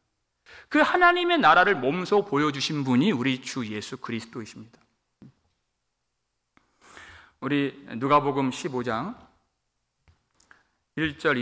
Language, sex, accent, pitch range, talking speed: English, male, Korean, 120-170 Hz, 75 wpm